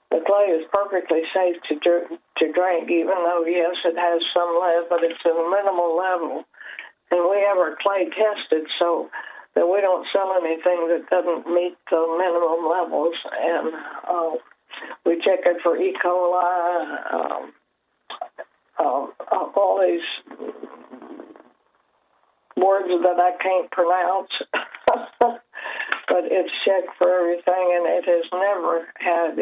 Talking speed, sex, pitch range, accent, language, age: 135 wpm, female, 170-185 Hz, American, English, 60-79